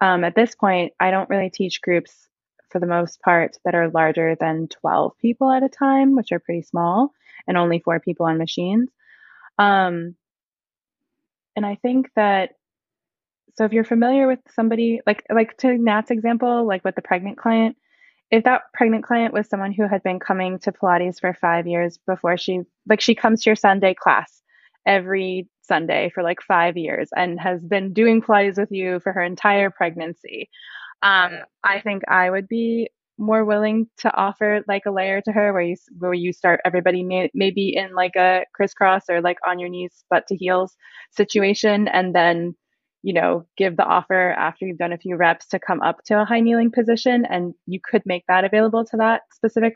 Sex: female